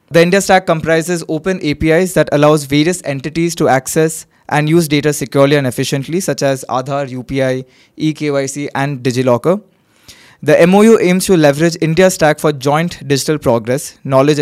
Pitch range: 140-165 Hz